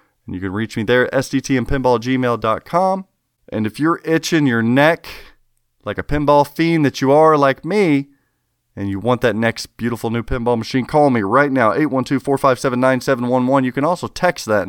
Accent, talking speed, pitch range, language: American, 210 wpm, 105-140 Hz, English